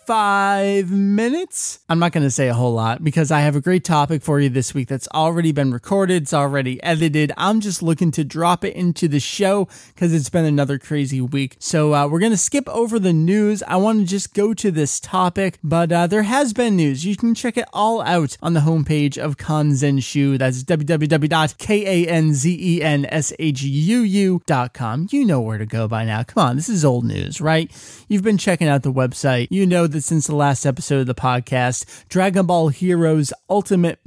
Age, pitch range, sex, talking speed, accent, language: 20-39, 140-190 Hz, male, 200 wpm, American, English